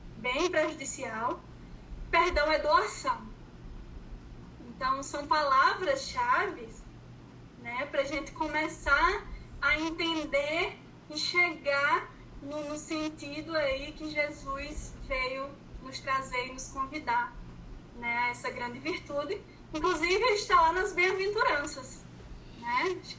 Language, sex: Portuguese, female